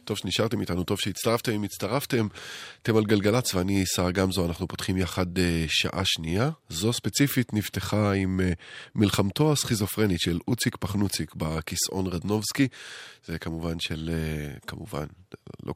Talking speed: 135 wpm